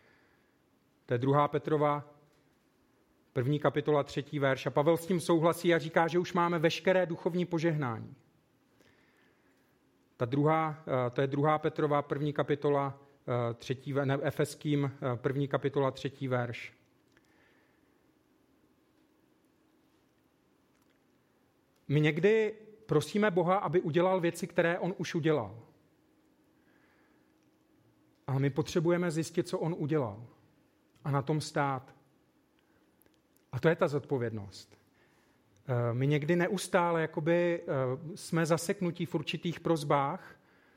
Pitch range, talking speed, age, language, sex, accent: 140-170 Hz, 105 wpm, 40-59, Czech, male, native